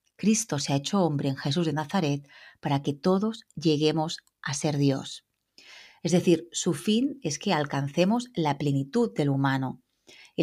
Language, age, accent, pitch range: Spanish, 30-49, Spanish, 145-185 Hz